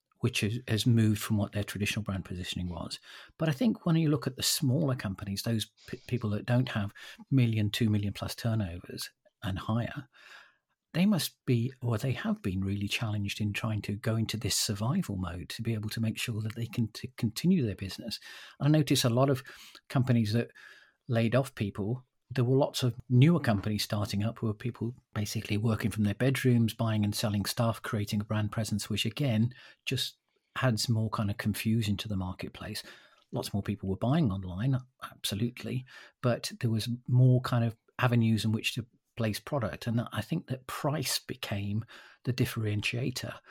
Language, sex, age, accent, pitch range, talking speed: English, male, 50-69, British, 105-125 Hz, 185 wpm